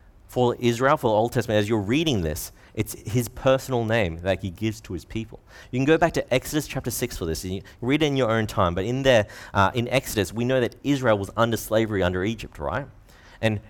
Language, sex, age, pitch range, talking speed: English, male, 30-49, 95-120 Hz, 240 wpm